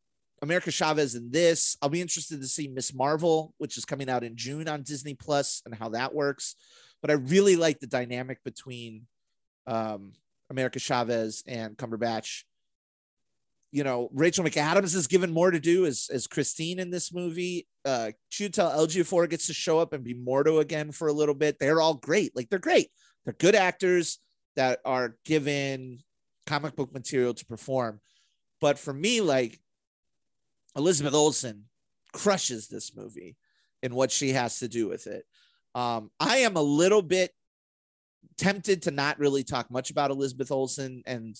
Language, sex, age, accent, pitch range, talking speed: English, male, 30-49, American, 120-160 Hz, 170 wpm